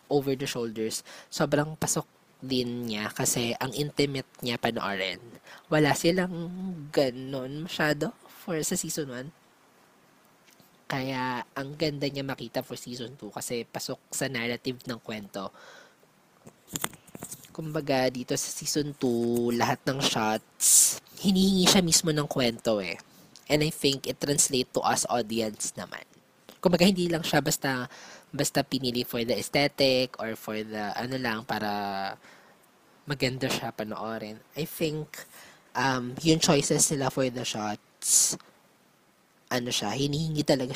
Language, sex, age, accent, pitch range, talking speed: Filipino, female, 20-39, native, 120-150 Hz, 130 wpm